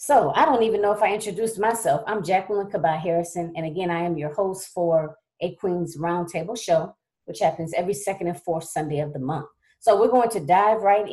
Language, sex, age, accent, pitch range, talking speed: English, female, 30-49, American, 165-195 Hz, 215 wpm